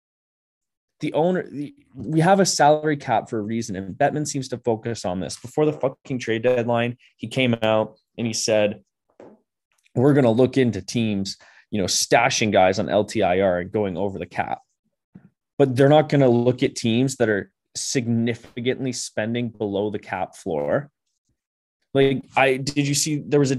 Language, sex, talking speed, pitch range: English, male, 175 wpm, 110-140 Hz